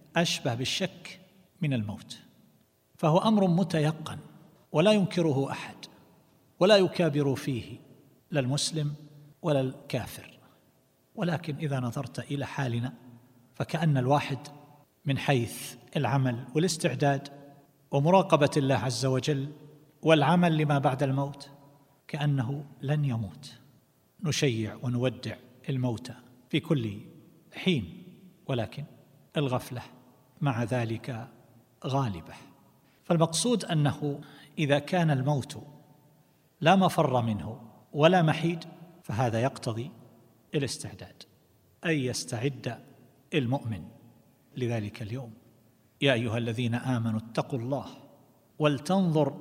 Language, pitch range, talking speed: Arabic, 125-155 Hz, 90 wpm